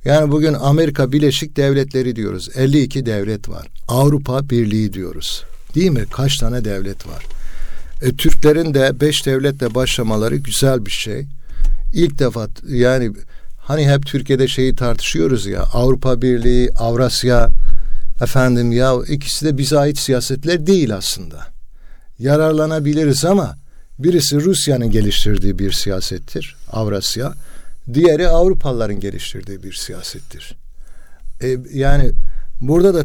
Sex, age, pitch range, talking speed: male, 60-79, 105-145 Hz, 120 wpm